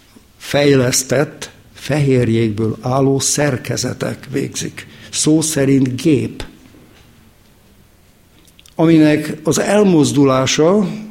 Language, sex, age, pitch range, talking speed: Hungarian, male, 60-79, 125-155 Hz, 60 wpm